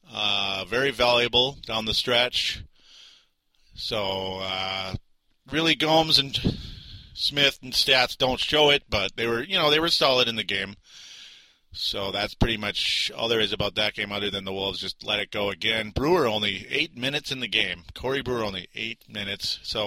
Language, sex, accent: English, male, American